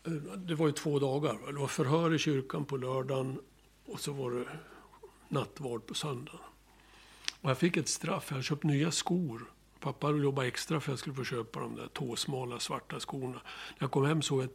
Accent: native